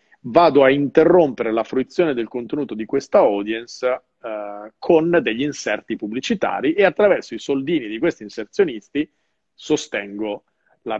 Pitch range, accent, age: 110-155 Hz, native, 40-59